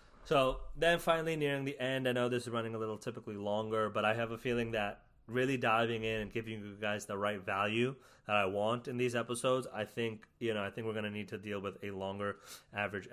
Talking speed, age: 240 wpm, 30-49